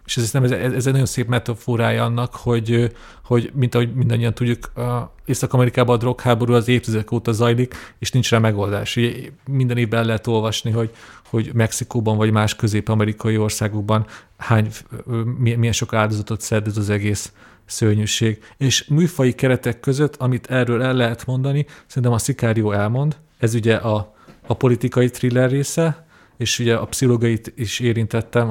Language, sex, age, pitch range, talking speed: Hungarian, male, 40-59, 115-130 Hz, 160 wpm